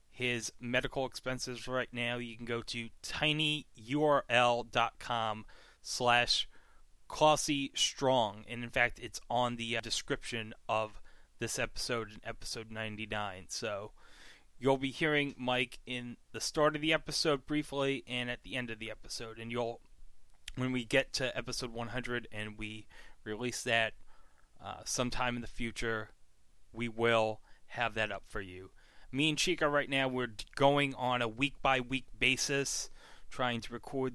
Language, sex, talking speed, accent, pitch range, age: English, male, 150 wpm, American, 115-130 Hz, 30-49